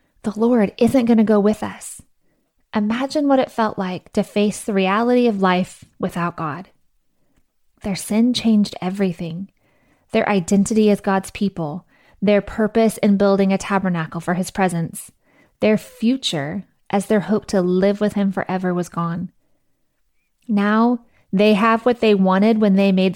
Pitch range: 190-225 Hz